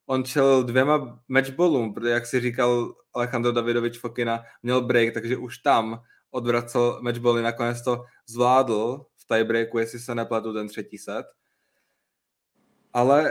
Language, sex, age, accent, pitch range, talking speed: Czech, male, 20-39, native, 120-135 Hz, 135 wpm